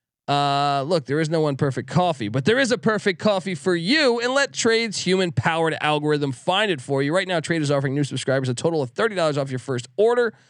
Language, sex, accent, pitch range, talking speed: English, male, American, 135-190 Hz, 235 wpm